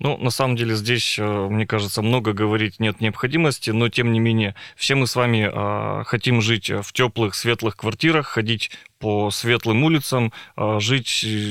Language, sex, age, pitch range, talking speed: Russian, male, 20-39, 110-125 Hz, 165 wpm